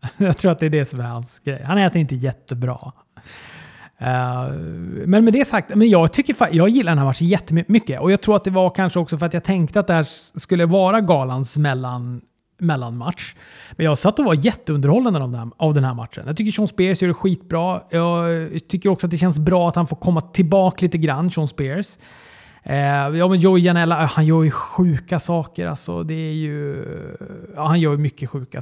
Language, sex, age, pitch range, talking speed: Swedish, male, 30-49, 140-190 Hz, 205 wpm